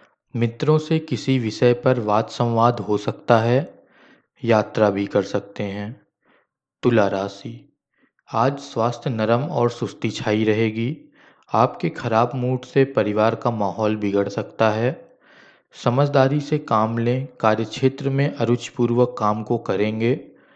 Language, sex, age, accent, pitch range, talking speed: Hindi, male, 20-39, native, 110-140 Hz, 130 wpm